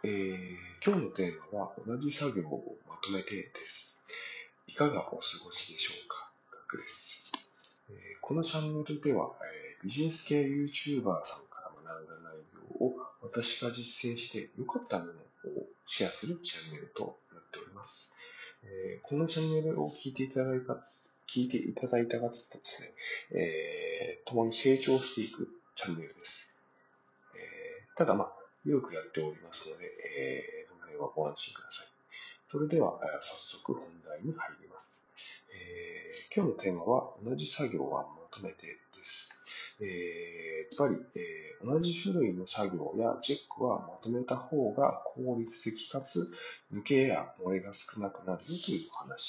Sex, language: male, Japanese